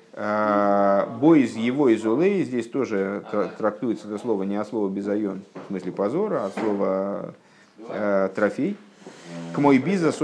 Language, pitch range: Russian, 105-150 Hz